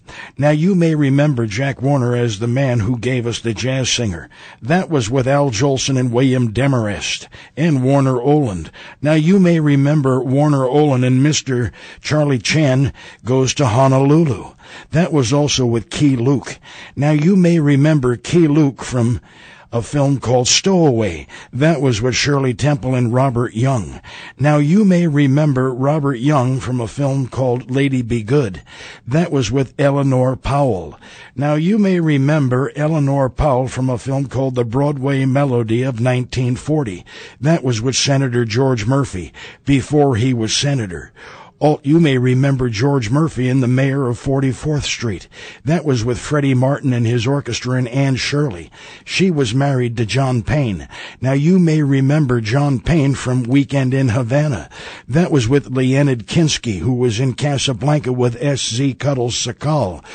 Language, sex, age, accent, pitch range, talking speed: English, male, 60-79, American, 125-145 Hz, 160 wpm